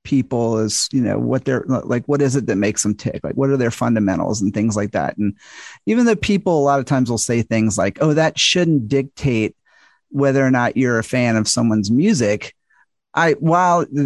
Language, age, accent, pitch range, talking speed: English, 40-59, American, 120-155 Hz, 215 wpm